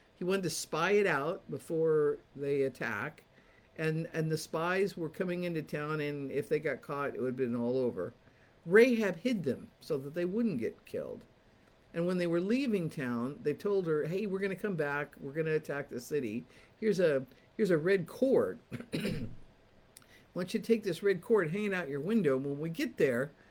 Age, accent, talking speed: 50-69, American, 195 wpm